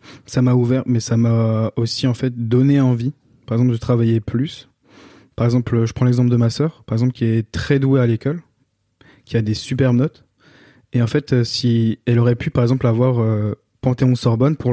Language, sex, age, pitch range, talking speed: French, male, 20-39, 115-130 Hz, 200 wpm